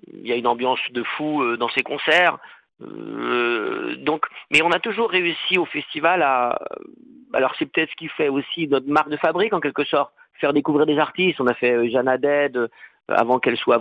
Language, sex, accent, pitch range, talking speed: French, male, French, 130-175 Hz, 195 wpm